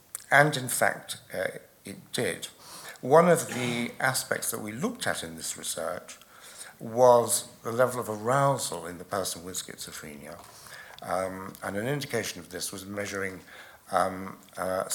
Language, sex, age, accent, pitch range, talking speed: English, male, 60-79, British, 95-125 Hz, 150 wpm